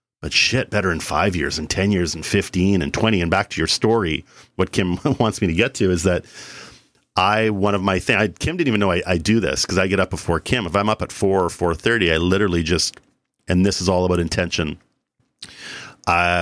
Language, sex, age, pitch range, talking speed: English, male, 40-59, 85-100 Hz, 235 wpm